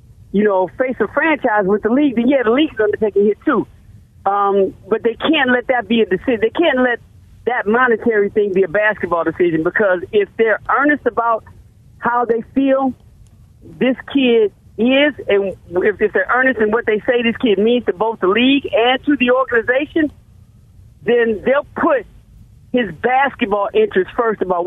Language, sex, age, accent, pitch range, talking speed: English, male, 40-59, American, 180-245 Hz, 185 wpm